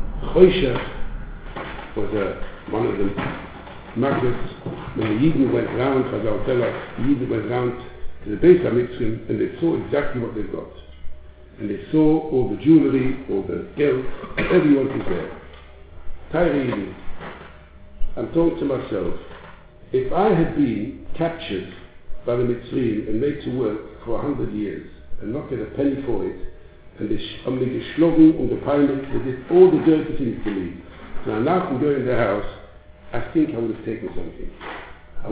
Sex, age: male, 60-79